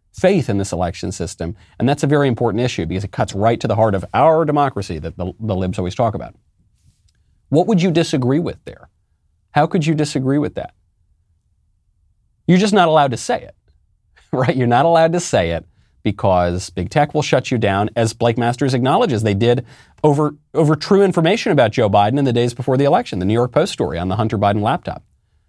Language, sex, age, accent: English, male, 40-59, American